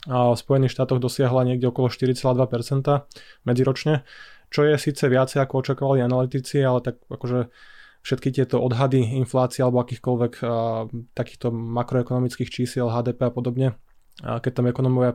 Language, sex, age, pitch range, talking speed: Slovak, male, 20-39, 125-130 Hz, 145 wpm